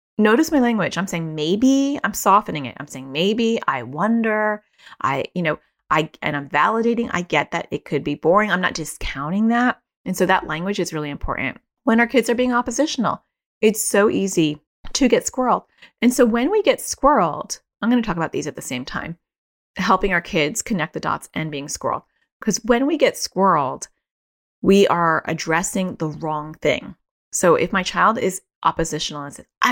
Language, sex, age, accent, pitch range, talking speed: English, female, 30-49, American, 160-225 Hz, 195 wpm